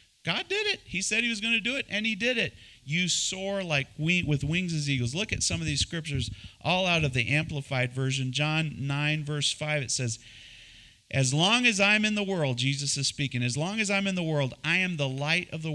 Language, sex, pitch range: English, male, 120-170 Hz